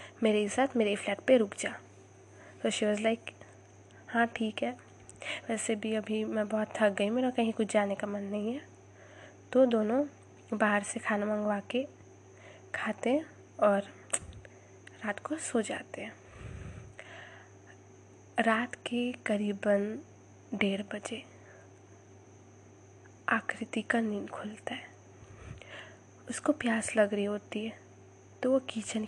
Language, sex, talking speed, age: Hindi, female, 130 wpm, 20-39